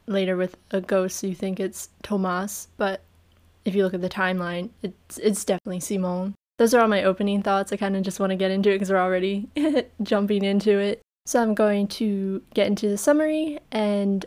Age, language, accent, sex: 10-29, English, American, female